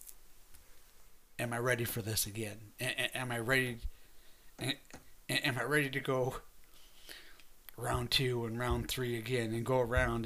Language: English